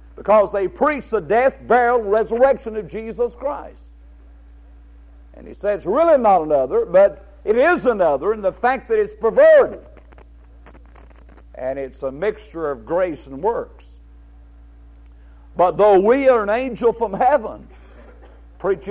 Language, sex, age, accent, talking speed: English, male, 60-79, American, 140 wpm